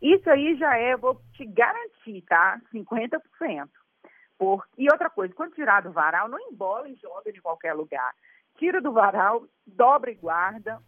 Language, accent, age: Portuguese, Brazilian, 40-59